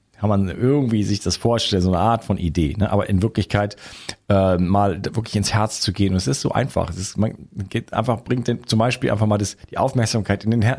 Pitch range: 95-115 Hz